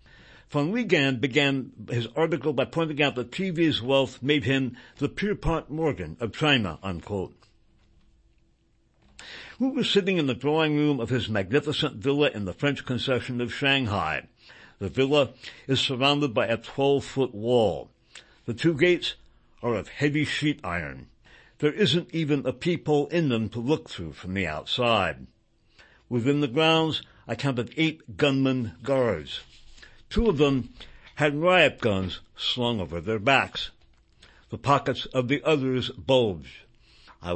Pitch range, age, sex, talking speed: 110-150 Hz, 60-79, male, 145 wpm